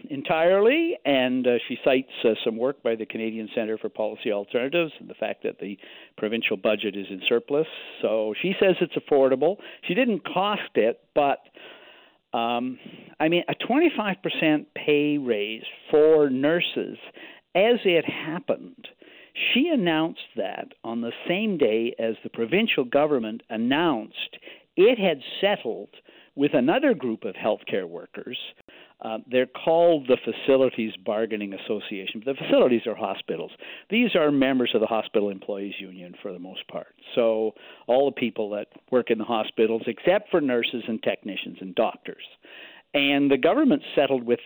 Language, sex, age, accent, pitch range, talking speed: English, male, 50-69, American, 115-180 Hz, 150 wpm